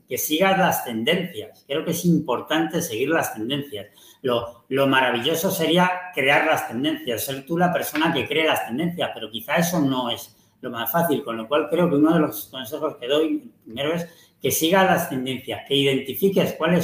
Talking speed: 190 wpm